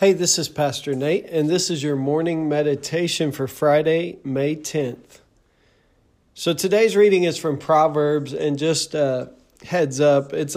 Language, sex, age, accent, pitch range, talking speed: English, male, 40-59, American, 135-160 Hz, 155 wpm